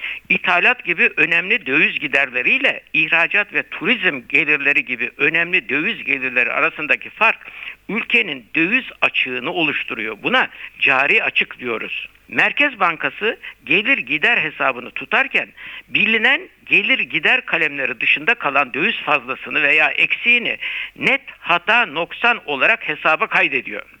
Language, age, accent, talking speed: Turkish, 60-79, native, 115 wpm